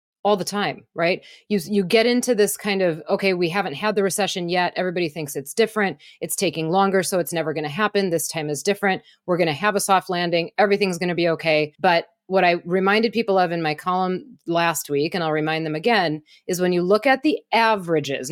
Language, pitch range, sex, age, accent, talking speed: English, 155-200 Hz, female, 30-49, American, 230 wpm